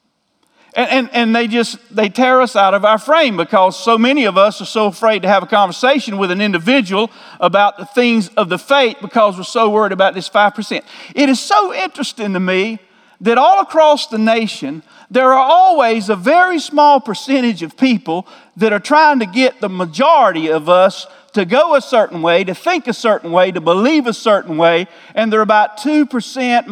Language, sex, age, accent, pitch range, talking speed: English, male, 50-69, American, 185-265 Hz, 200 wpm